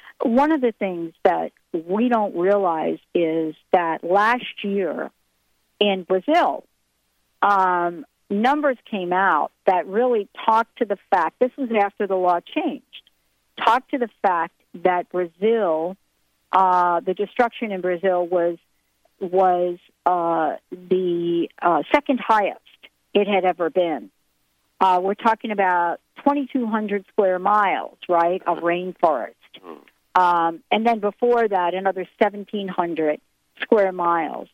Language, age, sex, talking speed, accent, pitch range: English, 50-69, female, 125 wpm, American, 180-235 Hz